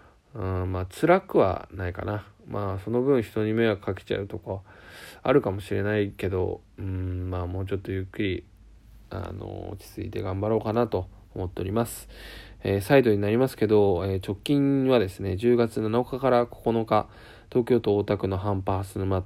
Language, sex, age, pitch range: Japanese, male, 20-39, 95-115 Hz